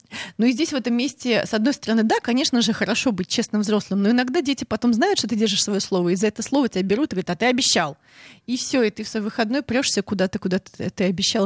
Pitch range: 205-265 Hz